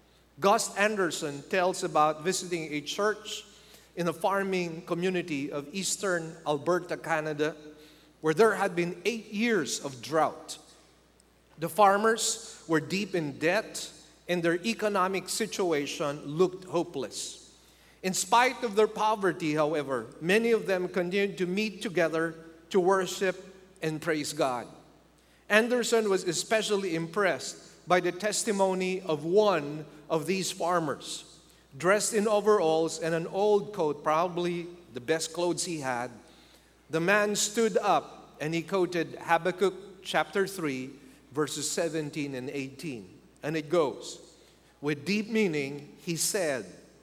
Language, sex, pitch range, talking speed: English, male, 160-200 Hz, 130 wpm